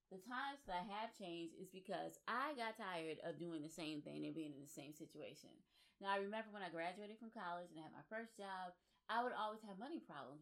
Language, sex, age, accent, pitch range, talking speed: English, female, 20-39, American, 170-210 Hz, 240 wpm